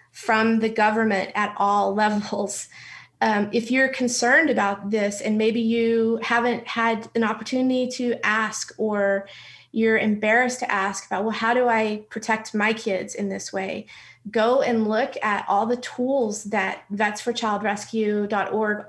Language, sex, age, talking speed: English, female, 30-49, 145 wpm